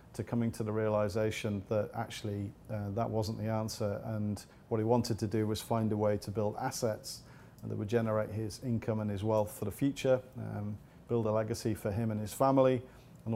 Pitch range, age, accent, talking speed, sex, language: 110-125 Hz, 40-59, British, 200 wpm, male, English